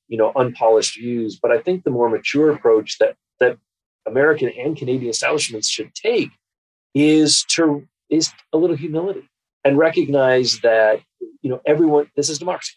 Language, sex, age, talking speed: English, male, 40-59, 155 wpm